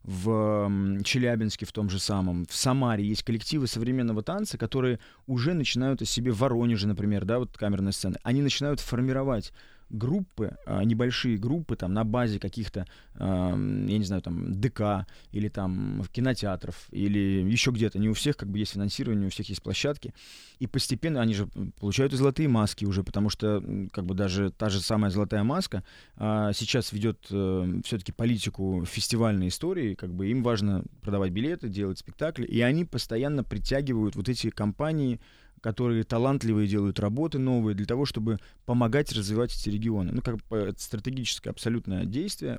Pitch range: 100-125 Hz